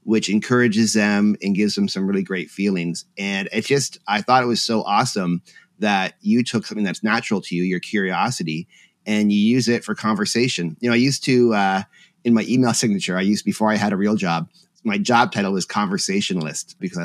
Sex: male